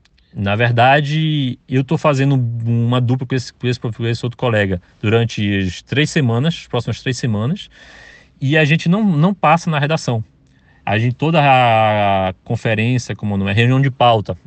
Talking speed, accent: 150 wpm, Brazilian